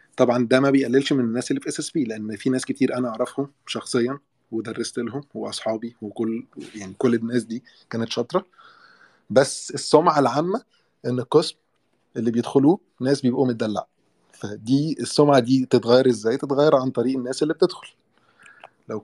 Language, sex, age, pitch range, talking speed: Arabic, male, 20-39, 120-145 Hz, 160 wpm